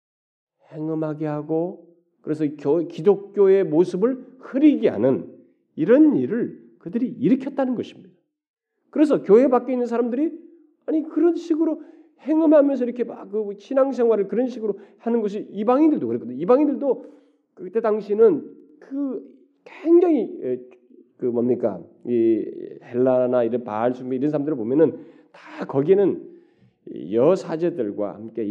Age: 40-59